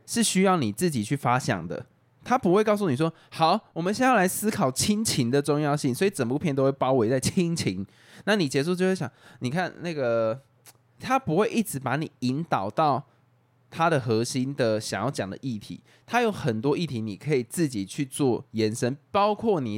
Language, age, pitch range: Chinese, 20-39, 120-175 Hz